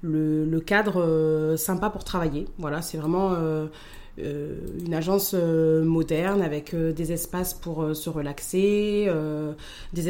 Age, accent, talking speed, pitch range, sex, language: 20-39, French, 155 wpm, 160-190 Hz, female, French